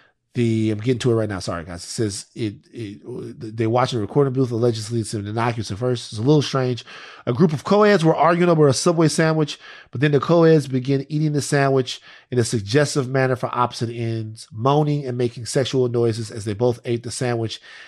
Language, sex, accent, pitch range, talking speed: English, male, American, 120-160 Hz, 215 wpm